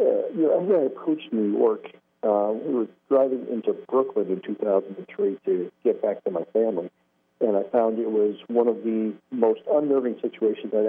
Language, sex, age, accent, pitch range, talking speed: English, male, 50-69, American, 100-135 Hz, 185 wpm